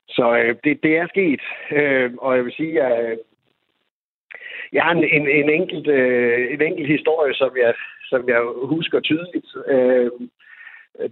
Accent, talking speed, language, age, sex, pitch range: native, 160 wpm, Danish, 60-79, male, 115-150 Hz